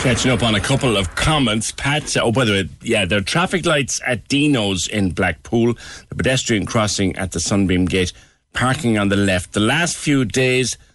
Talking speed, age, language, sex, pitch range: 195 wpm, 60-79, English, male, 90-120 Hz